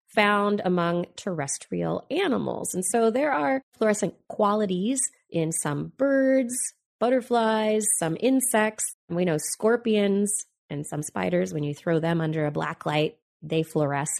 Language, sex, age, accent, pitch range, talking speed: English, female, 20-39, American, 160-230 Hz, 135 wpm